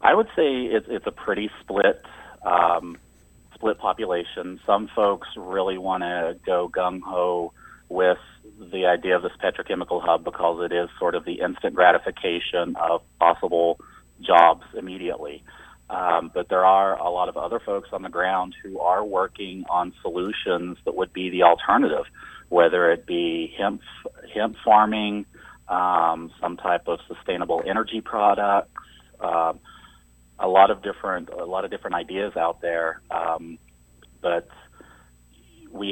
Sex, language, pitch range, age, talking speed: male, English, 85-100 Hz, 40-59, 145 wpm